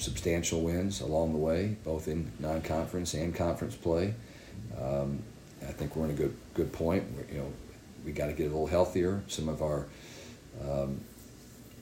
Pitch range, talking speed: 75-90 Hz, 175 wpm